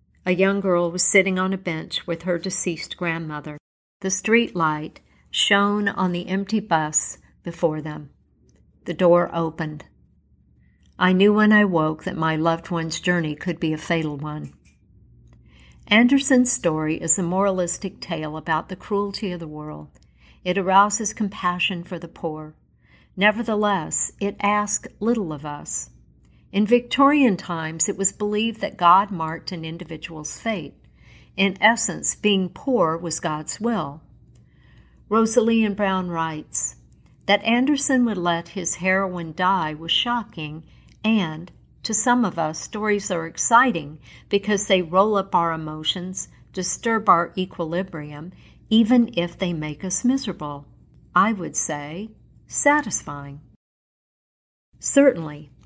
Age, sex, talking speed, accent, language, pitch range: 60-79, female, 135 wpm, American, English, 155-205 Hz